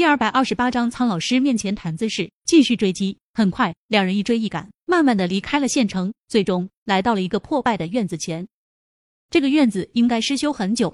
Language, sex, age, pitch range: Chinese, female, 20-39, 190-250 Hz